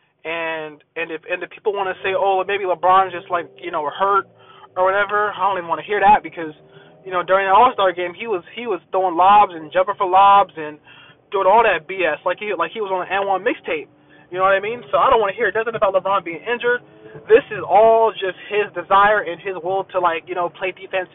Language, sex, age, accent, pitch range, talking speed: English, male, 20-39, American, 170-205 Hz, 260 wpm